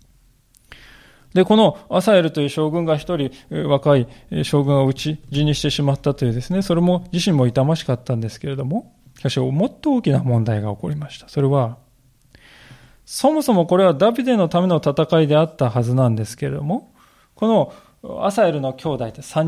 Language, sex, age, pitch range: Japanese, male, 20-39, 130-185 Hz